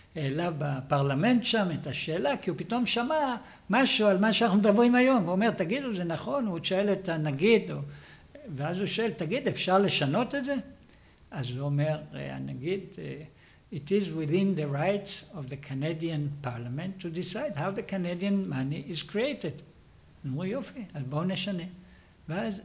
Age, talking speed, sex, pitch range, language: 60-79, 160 wpm, male, 145-190 Hz, Hebrew